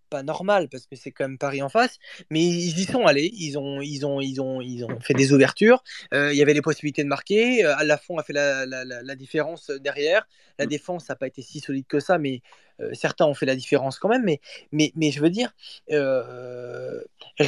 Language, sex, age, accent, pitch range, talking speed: French, male, 20-39, French, 145-210 Hz, 240 wpm